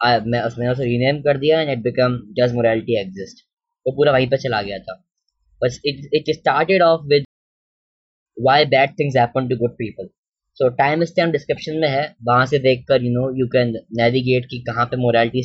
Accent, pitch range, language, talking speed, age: native, 120-150 Hz, Hindi, 175 wpm, 10-29